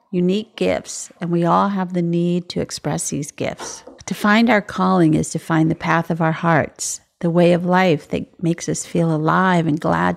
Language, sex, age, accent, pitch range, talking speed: English, female, 50-69, American, 165-190 Hz, 205 wpm